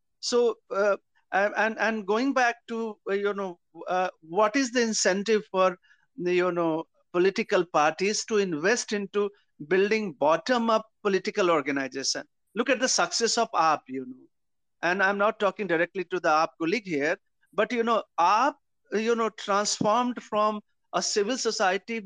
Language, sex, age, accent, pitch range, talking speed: English, male, 50-69, Indian, 180-240 Hz, 150 wpm